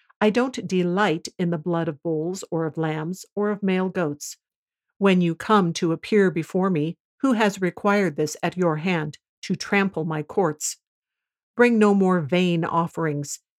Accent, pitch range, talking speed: American, 165-200 Hz, 170 wpm